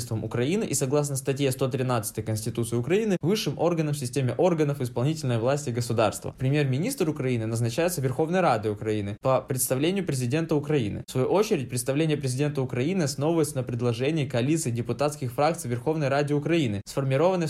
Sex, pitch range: male, 120-150 Hz